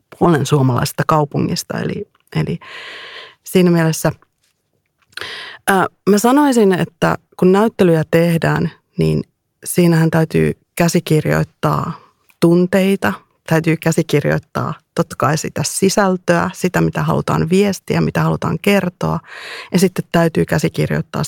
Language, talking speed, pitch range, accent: Finnish, 100 wpm, 160-185 Hz, native